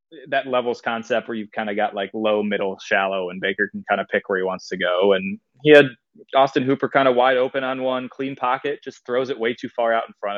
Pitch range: 110-145 Hz